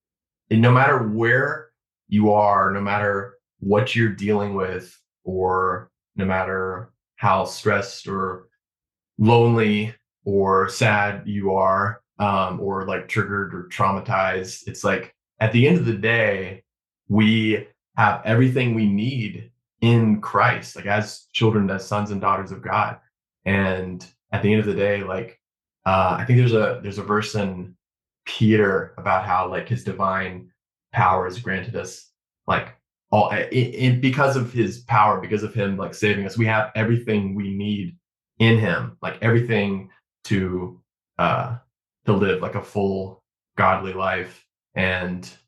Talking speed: 150 wpm